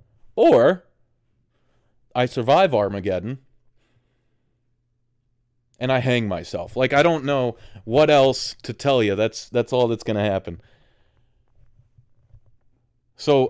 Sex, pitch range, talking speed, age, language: male, 110-130 Hz, 110 wpm, 30-49, English